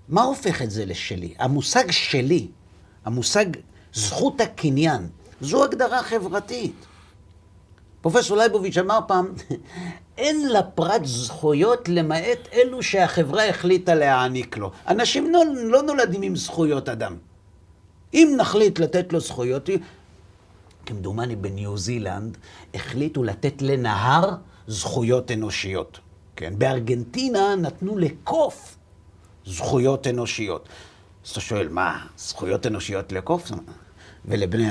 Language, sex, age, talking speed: Hebrew, male, 50-69, 105 wpm